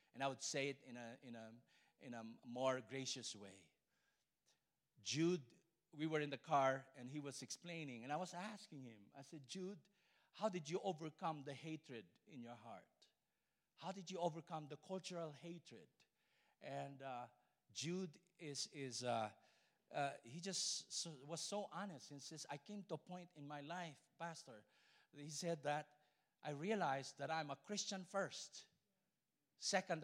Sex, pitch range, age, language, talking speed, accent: male, 140-190 Hz, 50-69, English, 165 wpm, Filipino